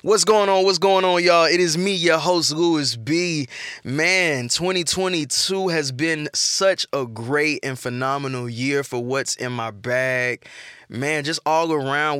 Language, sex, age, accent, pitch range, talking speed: English, male, 20-39, American, 125-155 Hz, 160 wpm